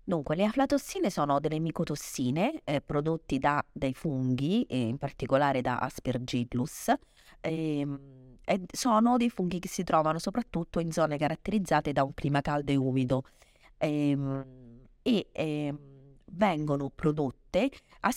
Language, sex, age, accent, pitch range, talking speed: Italian, female, 30-49, native, 130-170 Hz, 135 wpm